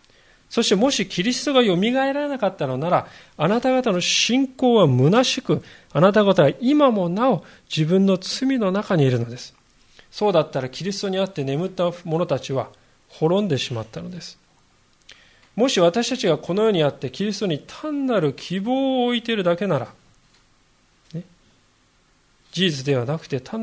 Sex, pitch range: male, 140-210 Hz